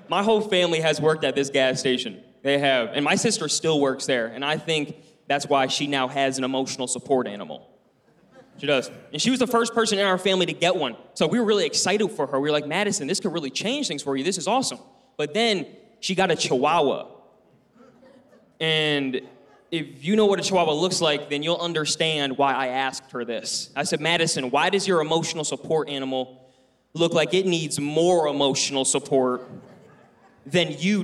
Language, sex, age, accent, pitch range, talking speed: English, male, 20-39, American, 145-215 Hz, 205 wpm